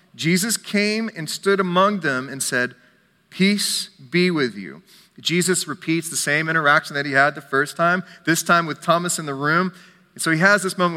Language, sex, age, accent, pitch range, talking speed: English, male, 30-49, American, 135-180 Hz, 190 wpm